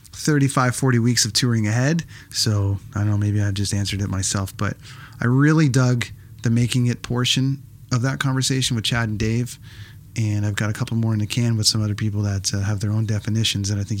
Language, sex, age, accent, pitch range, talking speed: English, male, 30-49, American, 105-125 Hz, 225 wpm